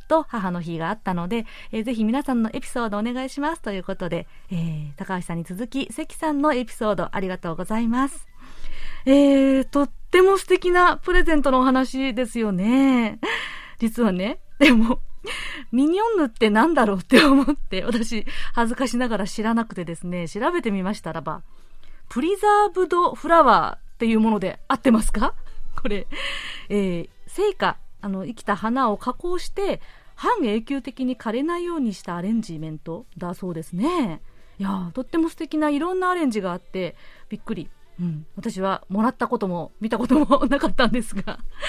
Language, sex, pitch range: Japanese, female, 200-285 Hz